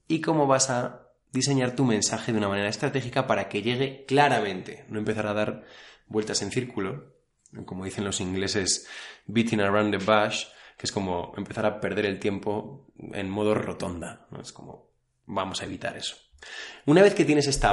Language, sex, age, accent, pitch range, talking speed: Spanish, male, 20-39, Spanish, 105-130 Hz, 175 wpm